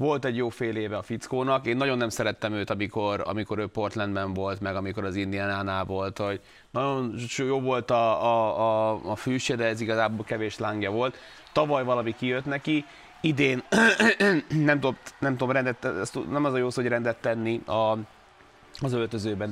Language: Hungarian